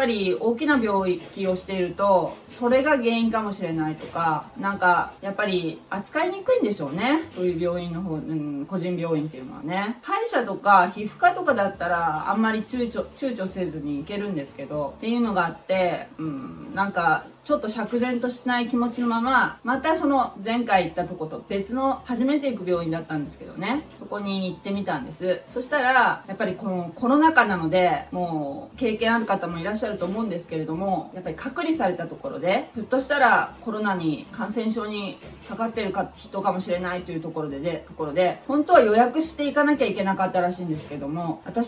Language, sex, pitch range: Japanese, female, 175-240 Hz